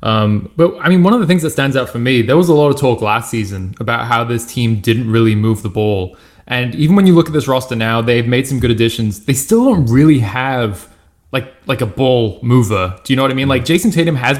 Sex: male